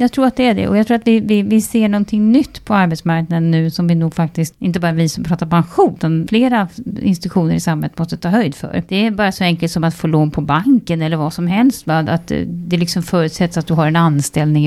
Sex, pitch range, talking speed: female, 160-200 Hz, 255 wpm